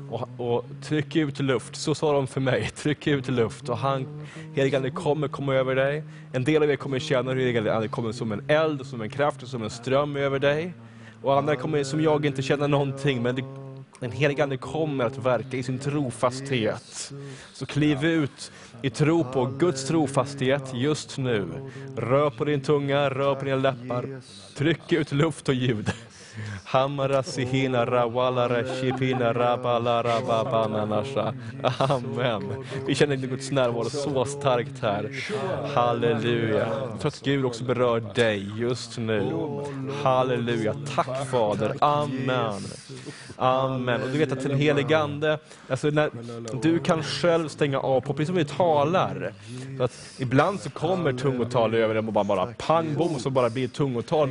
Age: 20-39